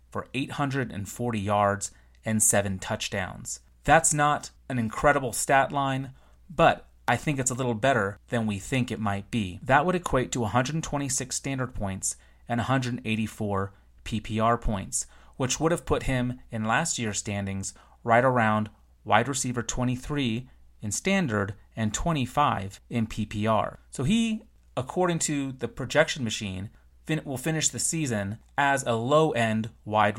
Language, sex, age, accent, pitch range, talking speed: English, male, 30-49, American, 105-135 Hz, 140 wpm